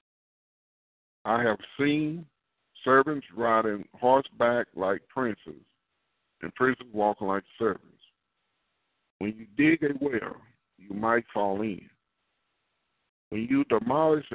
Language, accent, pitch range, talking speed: English, American, 105-140 Hz, 105 wpm